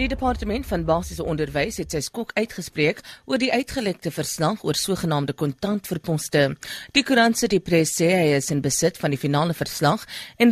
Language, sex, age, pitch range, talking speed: English, female, 40-59, 150-200 Hz, 170 wpm